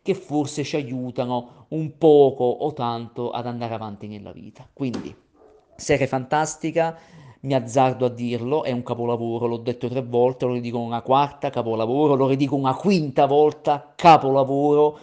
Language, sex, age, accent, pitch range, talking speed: Italian, male, 40-59, native, 120-140 Hz, 150 wpm